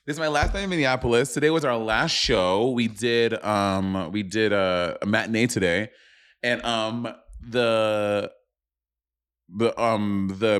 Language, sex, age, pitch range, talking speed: English, male, 30-49, 95-120 Hz, 155 wpm